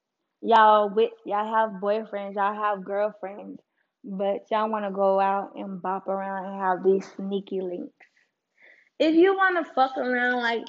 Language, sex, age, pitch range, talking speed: English, female, 10-29, 195-245 Hz, 150 wpm